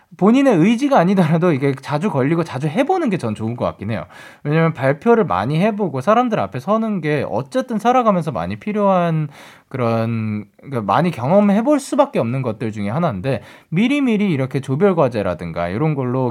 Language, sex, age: Korean, male, 20-39